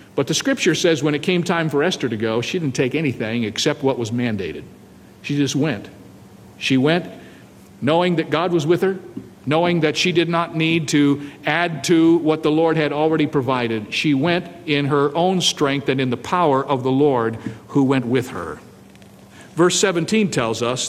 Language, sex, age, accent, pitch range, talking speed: English, male, 50-69, American, 130-170 Hz, 190 wpm